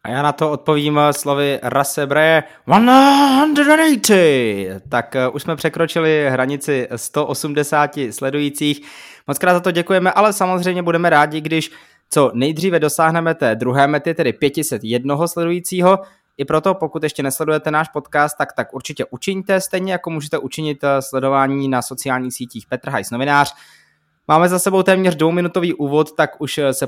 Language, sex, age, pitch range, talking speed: Czech, male, 20-39, 135-170 Hz, 145 wpm